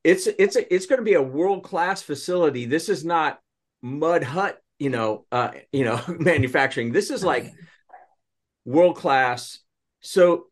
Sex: male